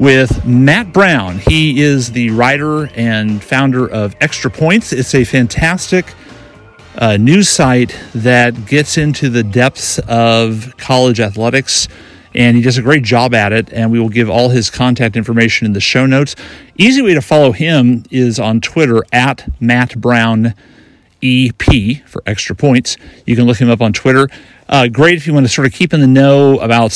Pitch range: 115-140 Hz